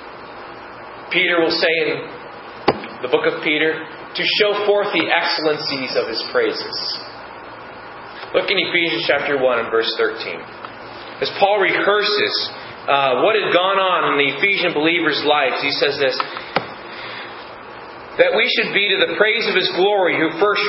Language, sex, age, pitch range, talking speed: English, male, 30-49, 180-290 Hz, 150 wpm